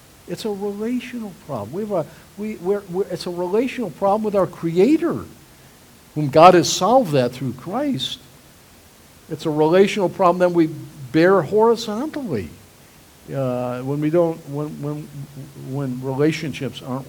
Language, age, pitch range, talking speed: English, 60-79, 135-195 Hz, 145 wpm